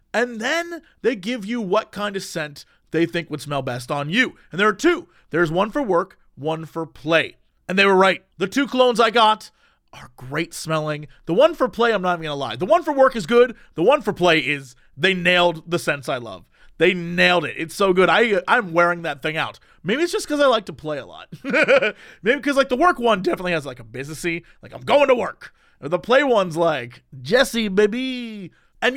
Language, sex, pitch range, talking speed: English, male, 170-250 Hz, 230 wpm